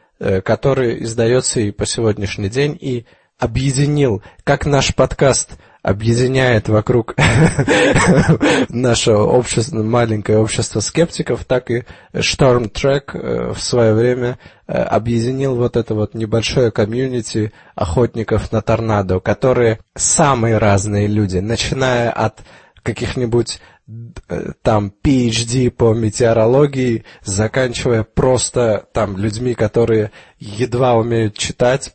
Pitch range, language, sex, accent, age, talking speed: 110-130 Hz, Russian, male, native, 20-39, 100 wpm